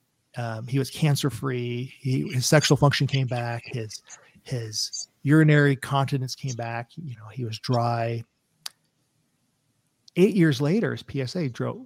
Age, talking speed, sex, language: 40-59, 135 wpm, male, English